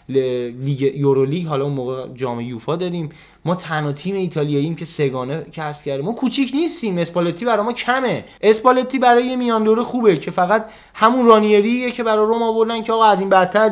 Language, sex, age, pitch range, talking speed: Persian, male, 20-39, 140-220 Hz, 175 wpm